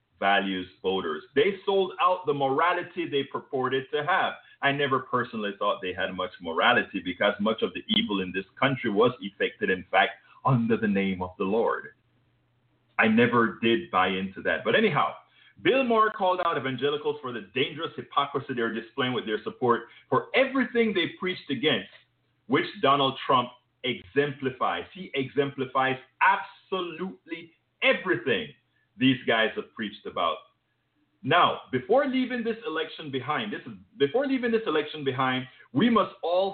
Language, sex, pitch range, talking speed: English, male, 120-190 Hz, 150 wpm